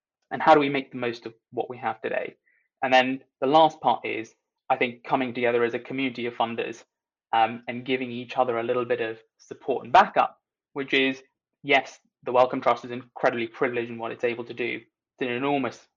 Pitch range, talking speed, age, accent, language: 115-135 Hz, 215 wpm, 20-39, British, English